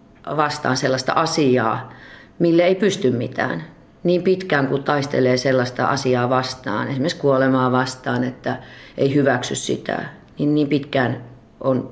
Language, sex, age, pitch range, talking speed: Finnish, female, 40-59, 125-150 Hz, 125 wpm